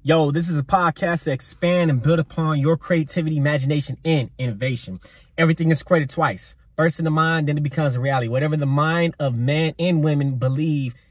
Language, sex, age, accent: English, male, 20-39, American